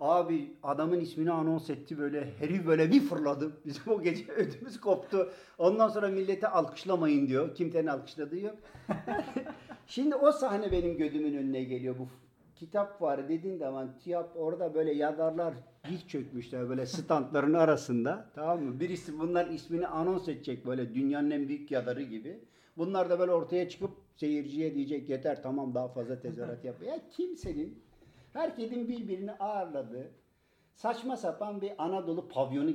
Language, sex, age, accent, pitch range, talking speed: Turkish, male, 50-69, native, 140-185 Hz, 145 wpm